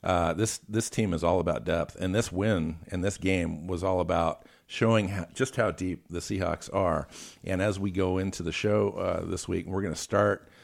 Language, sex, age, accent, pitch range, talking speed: English, male, 50-69, American, 90-105 Hz, 215 wpm